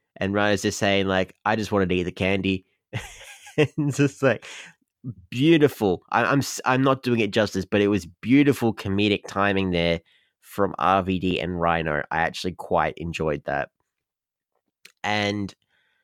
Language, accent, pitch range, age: English, Australian, 90-105 Hz, 30-49